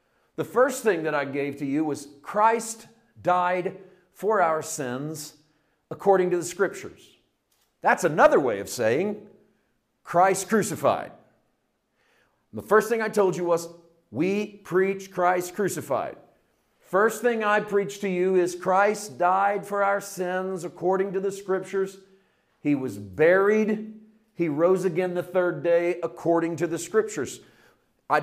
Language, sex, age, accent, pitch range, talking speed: English, male, 50-69, American, 150-190 Hz, 140 wpm